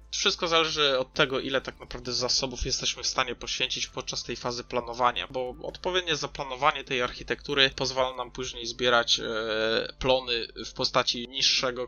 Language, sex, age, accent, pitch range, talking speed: Polish, male, 20-39, native, 120-130 Hz, 145 wpm